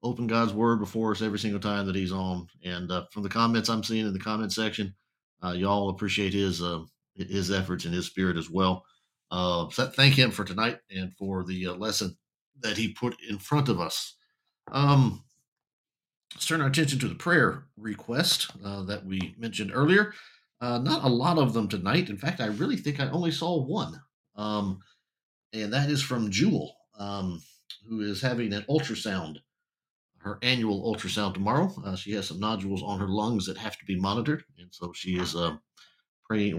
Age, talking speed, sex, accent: 50-69, 190 wpm, male, American